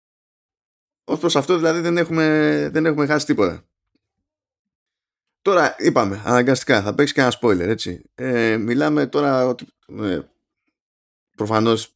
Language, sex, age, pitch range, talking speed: Greek, male, 20-39, 110-155 Hz, 120 wpm